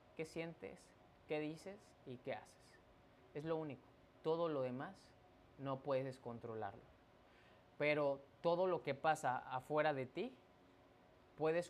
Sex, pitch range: male, 120-160 Hz